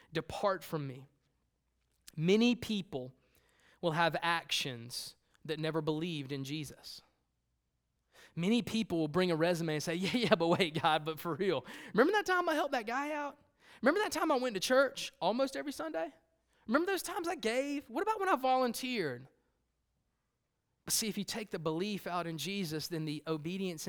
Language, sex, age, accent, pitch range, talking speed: English, male, 20-39, American, 155-220 Hz, 175 wpm